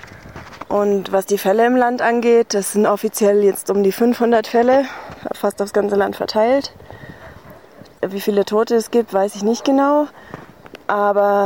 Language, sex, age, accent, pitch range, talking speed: German, female, 20-39, German, 195-215 Hz, 155 wpm